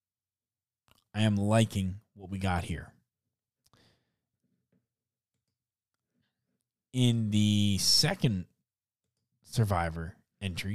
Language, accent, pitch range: English, American, 95-120 Hz